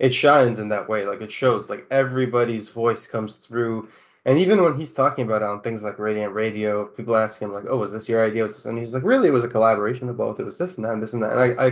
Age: 20-39